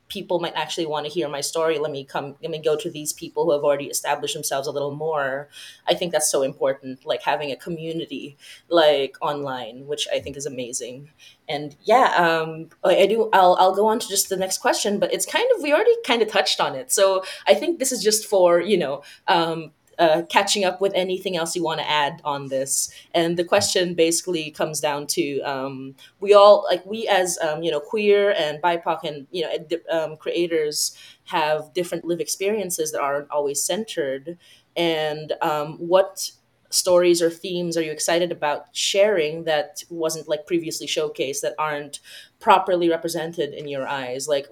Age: 20-39